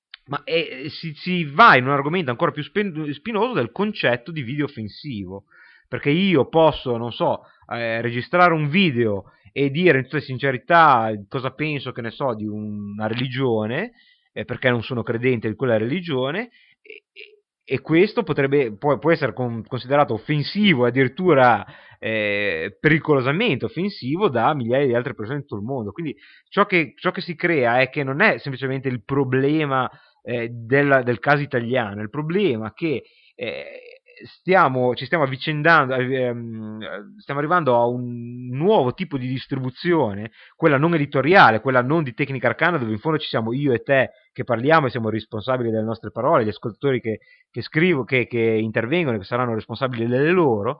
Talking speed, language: 165 wpm, Italian